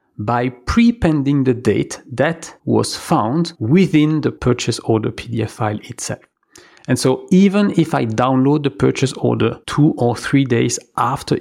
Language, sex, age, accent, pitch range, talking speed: English, male, 40-59, French, 115-155 Hz, 145 wpm